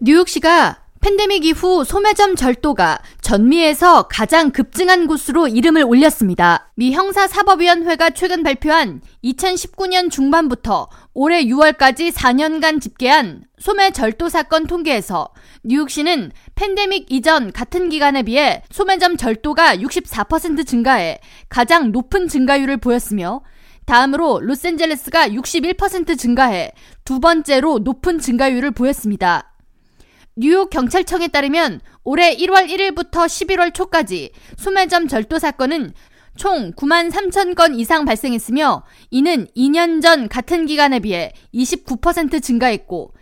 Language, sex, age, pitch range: Korean, female, 20-39, 260-350 Hz